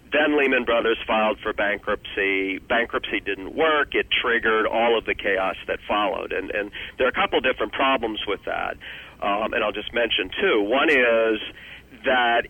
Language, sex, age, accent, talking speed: English, male, 50-69, American, 175 wpm